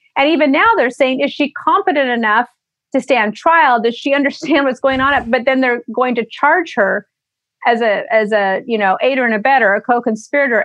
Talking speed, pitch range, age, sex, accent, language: 210 wpm, 215-265 Hz, 40-59, female, American, English